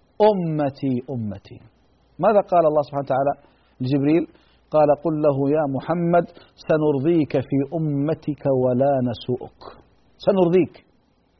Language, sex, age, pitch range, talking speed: Arabic, male, 50-69, 140-200 Hz, 100 wpm